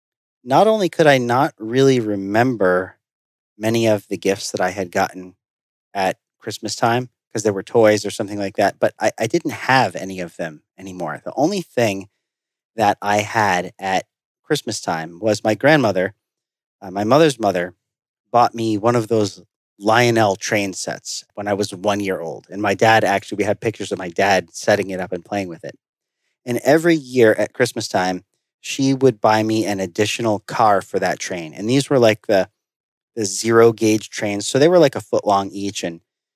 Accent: American